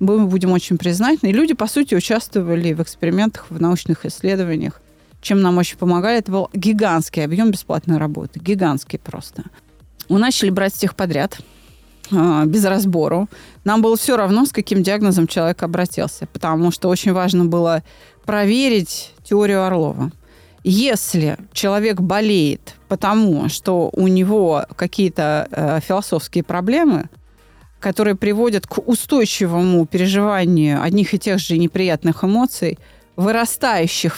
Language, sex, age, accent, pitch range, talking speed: Russian, female, 30-49, native, 175-225 Hz, 125 wpm